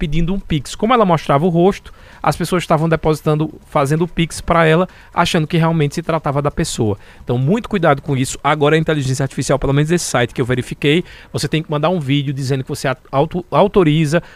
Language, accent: Portuguese, Brazilian